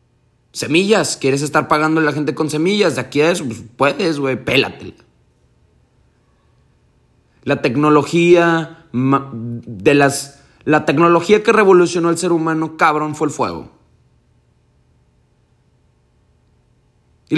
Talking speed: 115 wpm